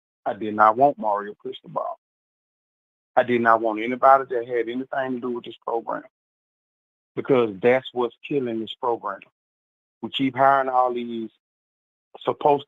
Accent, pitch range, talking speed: American, 110-135 Hz, 145 wpm